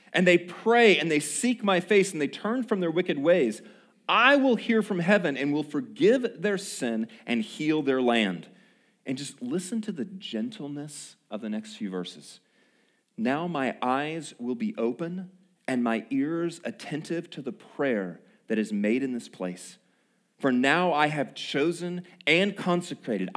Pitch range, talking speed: 135-225 Hz, 170 wpm